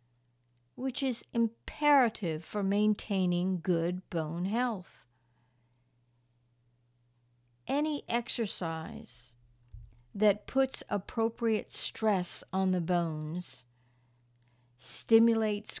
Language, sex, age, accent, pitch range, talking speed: English, female, 60-79, American, 120-205 Hz, 70 wpm